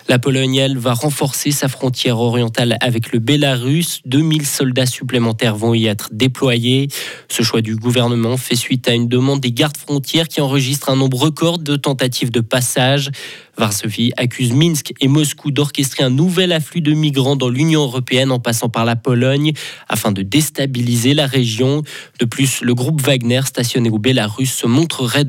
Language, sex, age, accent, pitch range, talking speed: French, male, 20-39, French, 120-140 Hz, 175 wpm